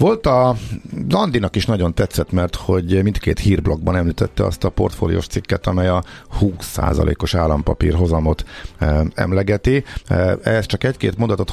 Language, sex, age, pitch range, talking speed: Hungarian, male, 50-69, 90-110 Hz, 125 wpm